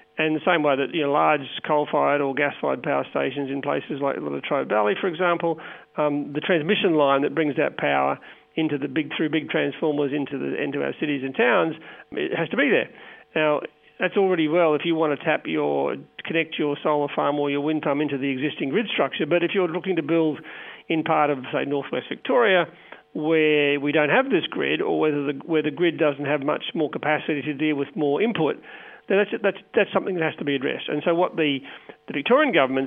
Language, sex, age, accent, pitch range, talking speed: English, male, 40-59, Australian, 145-165 Hz, 215 wpm